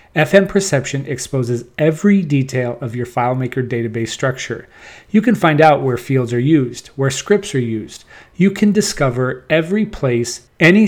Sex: male